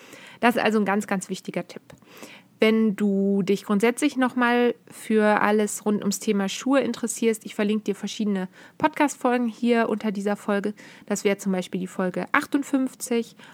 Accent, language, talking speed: German, German, 160 wpm